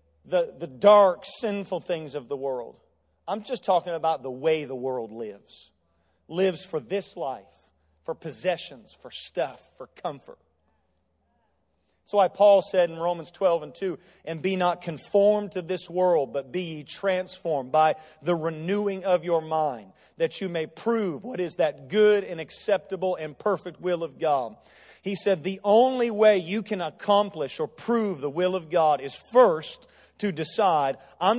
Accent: American